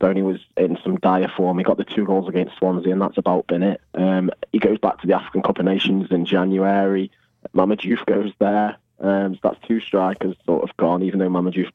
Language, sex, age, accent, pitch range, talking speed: English, male, 20-39, British, 95-105 Hz, 225 wpm